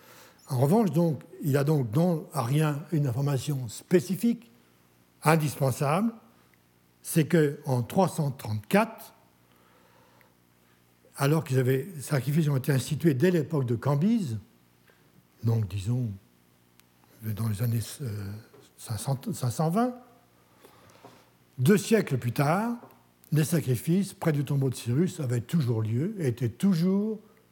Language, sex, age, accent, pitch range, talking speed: French, male, 60-79, French, 115-170 Hz, 110 wpm